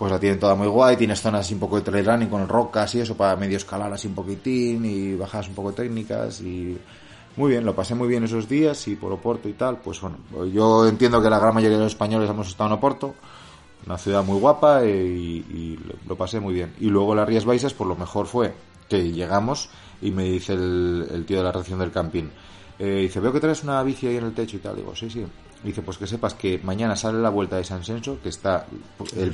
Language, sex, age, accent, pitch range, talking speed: Spanish, male, 30-49, Spanish, 90-115 Hz, 250 wpm